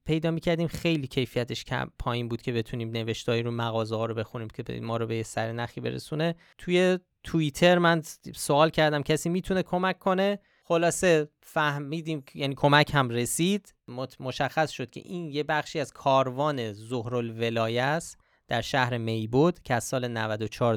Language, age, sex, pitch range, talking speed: Persian, 20-39, male, 115-155 Hz, 160 wpm